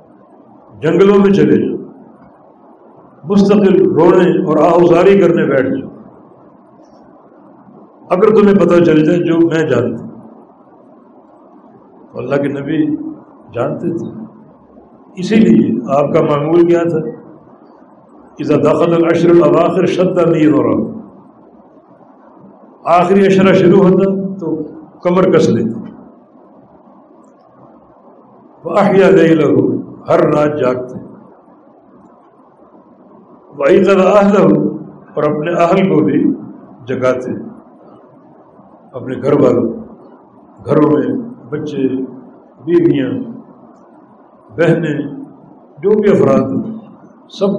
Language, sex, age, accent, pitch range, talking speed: English, male, 60-79, Indian, 150-195 Hz, 60 wpm